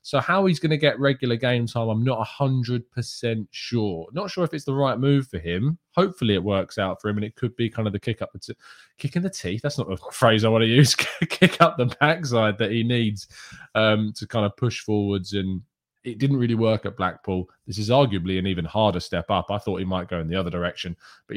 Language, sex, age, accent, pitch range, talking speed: English, male, 20-39, British, 95-125 Hz, 240 wpm